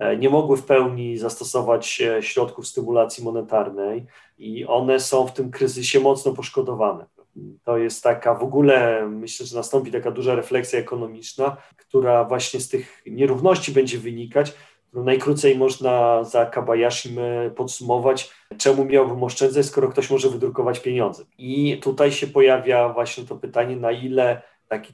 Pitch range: 115-135 Hz